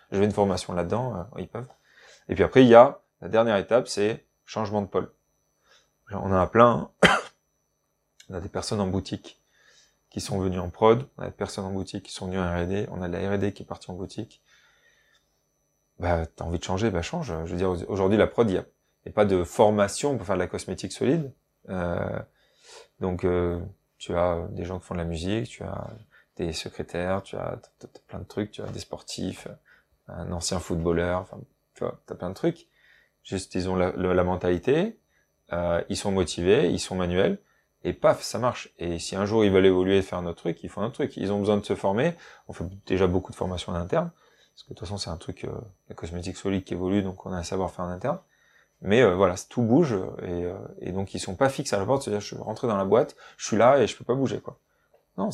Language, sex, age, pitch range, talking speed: French, male, 20-39, 90-105 Hz, 240 wpm